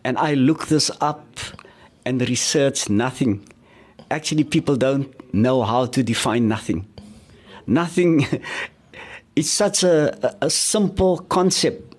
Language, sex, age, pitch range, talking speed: English, male, 60-79, 125-175 Hz, 115 wpm